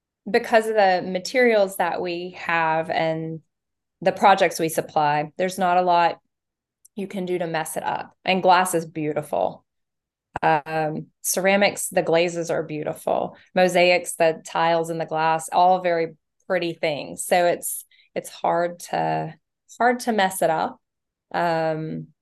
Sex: female